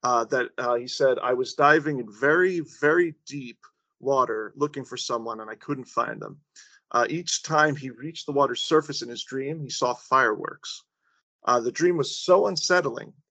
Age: 40-59